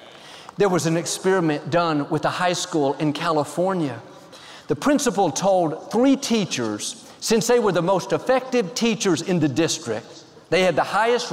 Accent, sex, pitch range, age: American, male, 160-225 Hz, 50-69